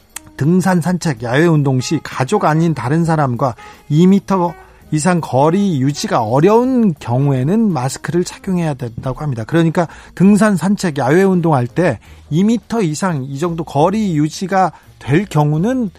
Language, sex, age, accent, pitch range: Korean, male, 40-59, native, 135-195 Hz